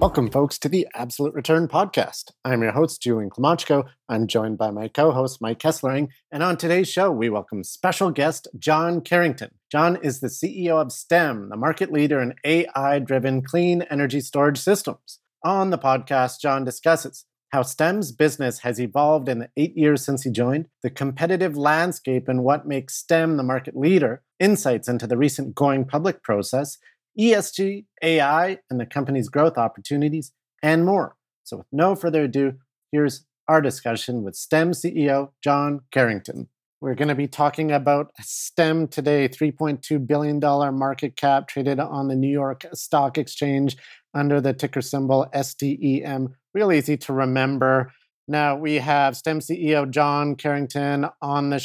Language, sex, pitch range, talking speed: English, male, 130-155 Hz, 160 wpm